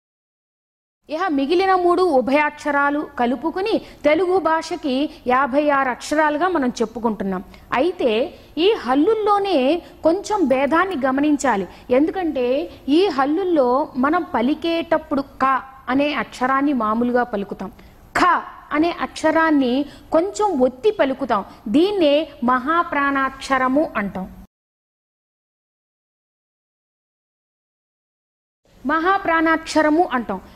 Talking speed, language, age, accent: 75 wpm, Telugu, 30-49, native